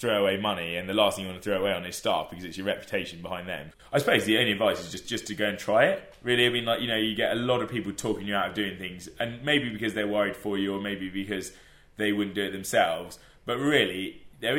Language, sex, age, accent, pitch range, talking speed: English, male, 20-39, British, 95-105 Hz, 290 wpm